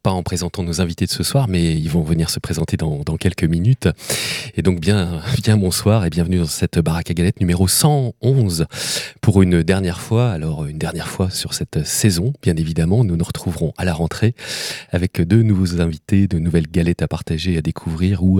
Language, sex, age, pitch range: French, male, 30-49, 85-105 Hz